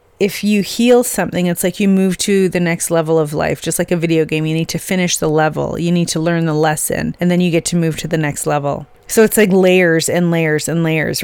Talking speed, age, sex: 260 wpm, 30-49, female